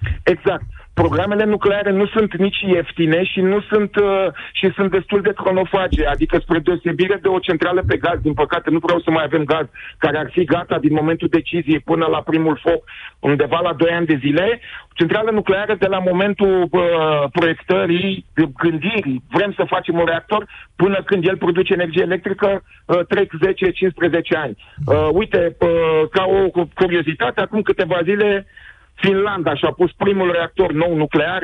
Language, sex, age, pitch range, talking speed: Romanian, male, 40-59, 160-195 Hz, 170 wpm